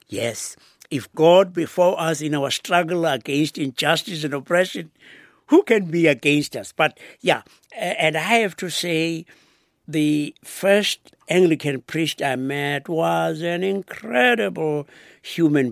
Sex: male